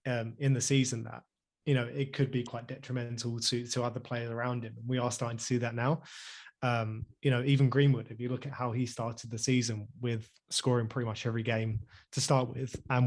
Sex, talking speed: male, 230 wpm